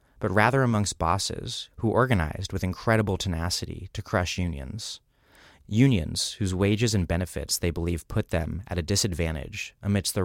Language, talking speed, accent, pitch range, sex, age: English, 150 wpm, American, 85-105 Hz, male, 30-49